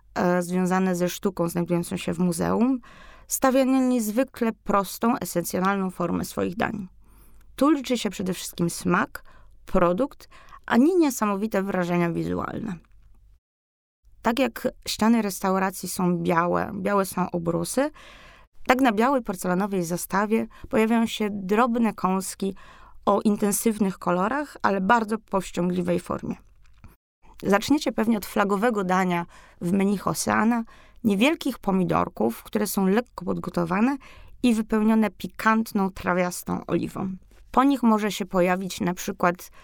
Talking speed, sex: 115 wpm, female